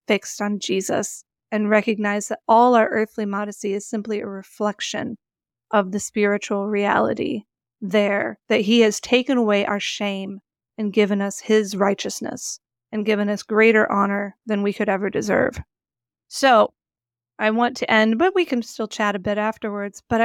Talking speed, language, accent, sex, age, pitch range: 165 wpm, English, American, female, 30-49, 205-225 Hz